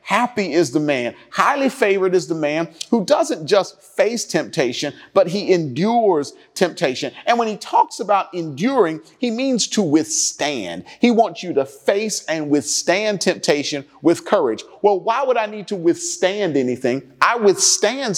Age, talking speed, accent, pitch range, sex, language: 40-59, 160 wpm, American, 155-210 Hz, male, English